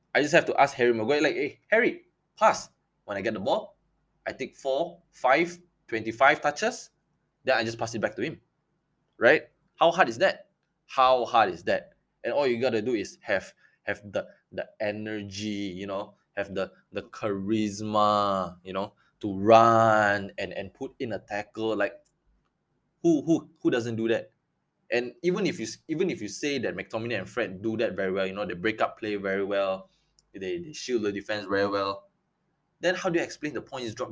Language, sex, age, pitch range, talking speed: English, male, 20-39, 105-165 Hz, 195 wpm